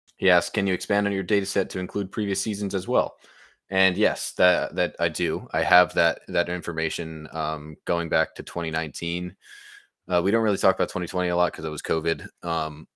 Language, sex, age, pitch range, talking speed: English, male, 20-39, 80-90 Hz, 210 wpm